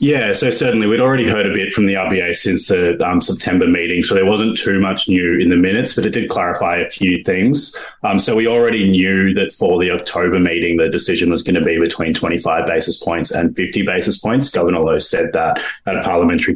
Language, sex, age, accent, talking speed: English, male, 20-39, Australian, 230 wpm